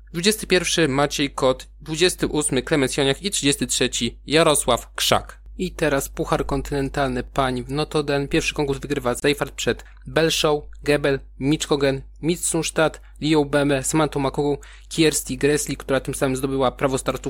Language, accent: Polish, native